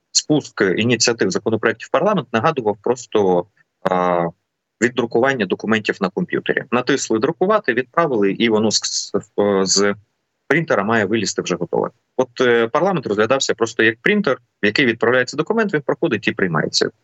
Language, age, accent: Ukrainian, 30-49, native